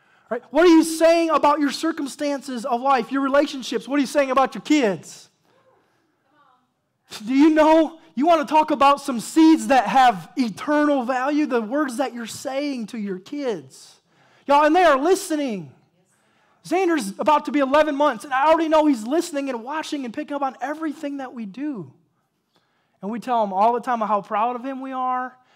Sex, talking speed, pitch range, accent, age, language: male, 190 wpm, 240-310 Hz, American, 20-39, English